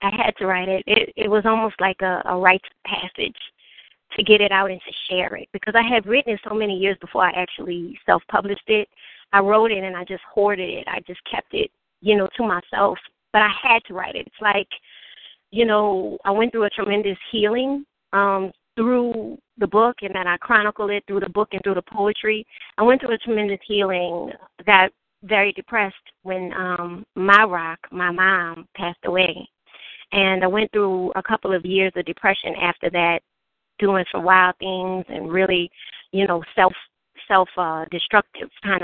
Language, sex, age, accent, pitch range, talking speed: English, female, 20-39, American, 180-210 Hz, 195 wpm